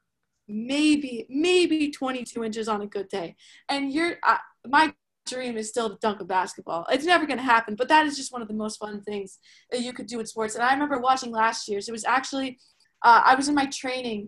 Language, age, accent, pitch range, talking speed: English, 20-39, American, 220-275 Hz, 225 wpm